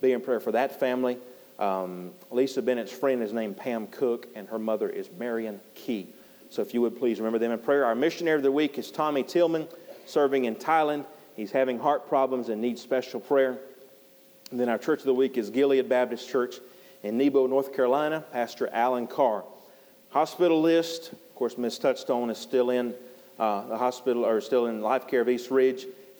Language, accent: English, American